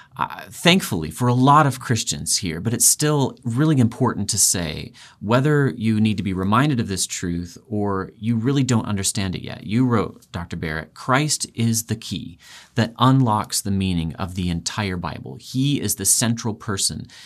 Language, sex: English, male